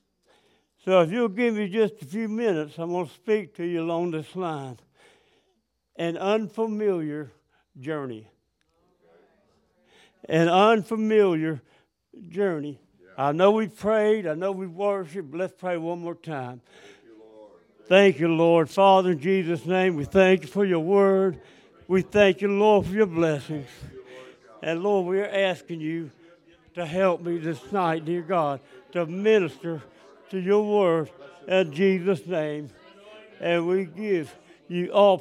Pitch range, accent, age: 150-195 Hz, American, 60-79